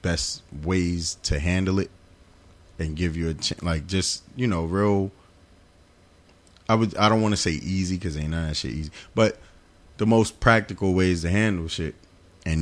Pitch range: 85-110 Hz